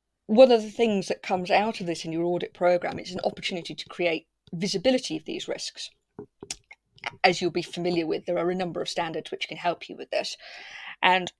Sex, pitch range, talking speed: female, 170-215 Hz, 210 wpm